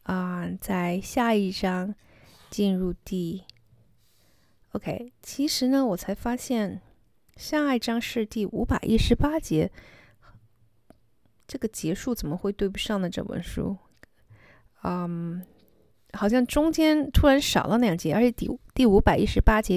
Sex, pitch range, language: female, 160-225 Hz, Chinese